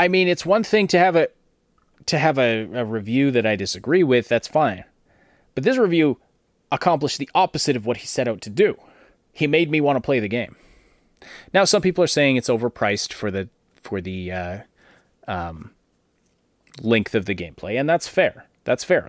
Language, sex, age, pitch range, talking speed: English, male, 30-49, 95-145 Hz, 195 wpm